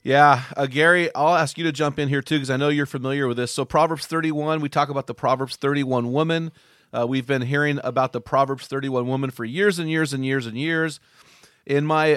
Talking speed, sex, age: 230 wpm, male, 30-49